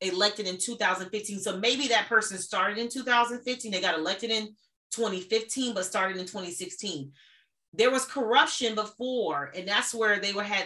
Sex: female